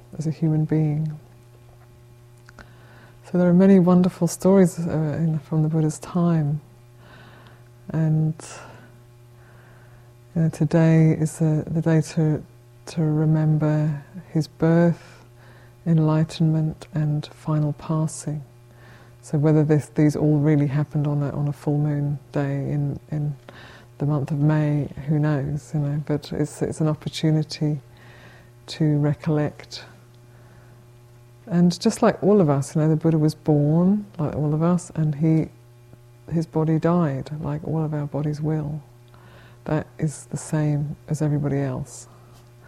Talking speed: 140 wpm